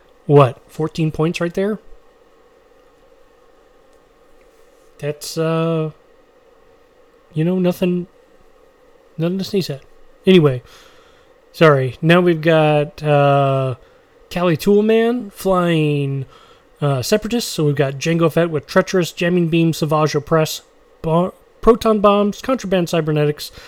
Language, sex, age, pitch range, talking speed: English, male, 30-49, 155-220 Hz, 105 wpm